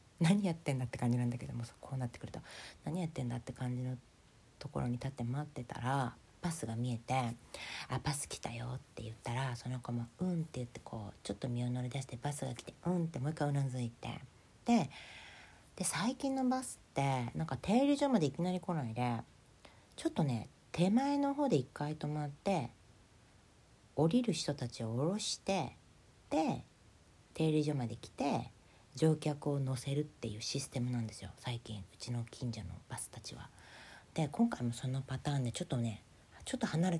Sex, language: female, Japanese